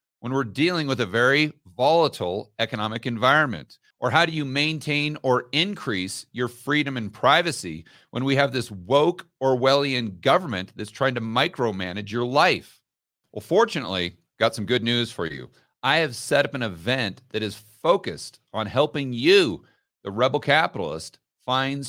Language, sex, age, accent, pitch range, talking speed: English, male, 40-59, American, 105-140 Hz, 155 wpm